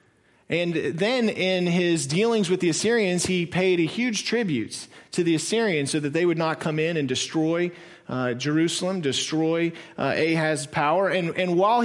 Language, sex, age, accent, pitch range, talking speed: English, male, 40-59, American, 145-185 Hz, 170 wpm